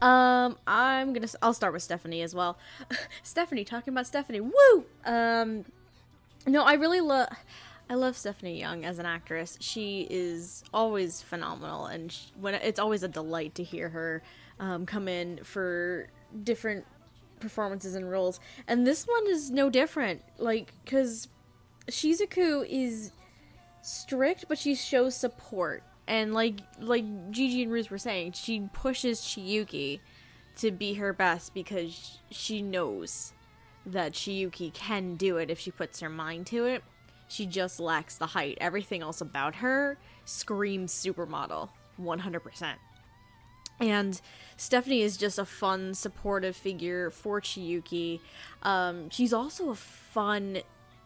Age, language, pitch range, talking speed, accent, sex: 10-29, English, 170-235 Hz, 140 wpm, American, female